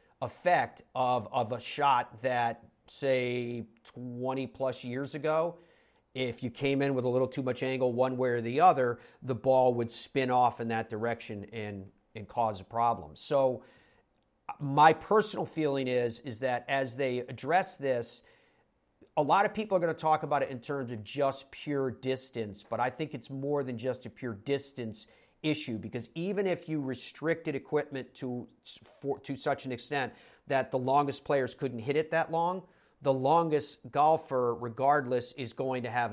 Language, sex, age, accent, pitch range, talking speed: English, male, 40-59, American, 120-140 Hz, 175 wpm